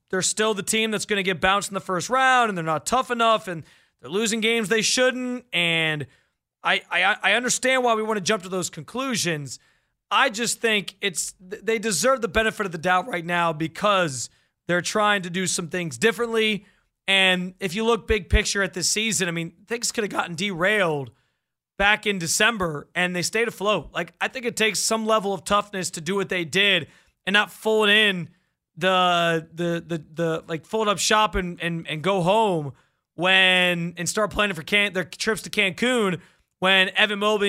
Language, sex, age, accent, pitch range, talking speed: English, male, 30-49, American, 180-220 Hz, 200 wpm